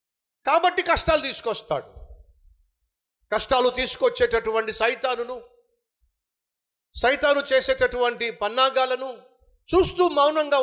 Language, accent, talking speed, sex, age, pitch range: Telugu, native, 60 wpm, male, 50-69, 210-300 Hz